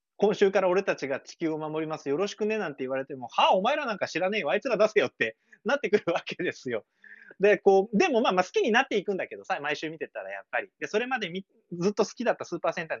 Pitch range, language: 160-270 Hz, Japanese